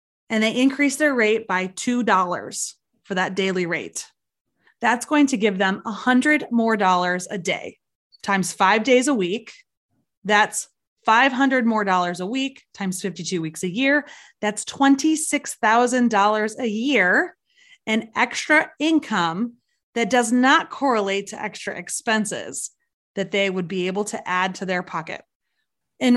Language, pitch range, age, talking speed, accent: English, 195-260 Hz, 20-39, 145 wpm, American